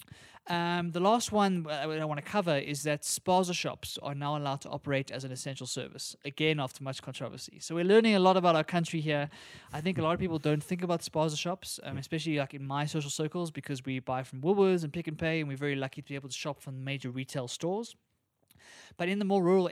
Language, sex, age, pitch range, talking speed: English, male, 20-39, 135-170 Hz, 240 wpm